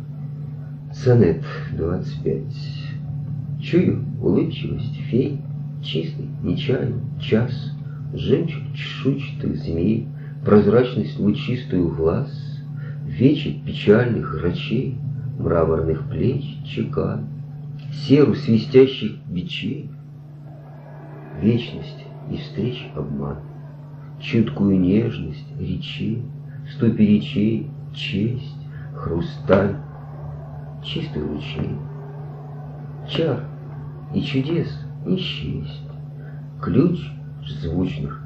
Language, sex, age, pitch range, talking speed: English, male, 50-69, 125-145 Hz, 65 wpm